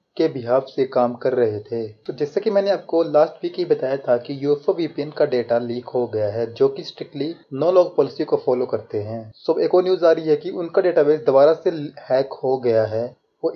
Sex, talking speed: male, 230 wpm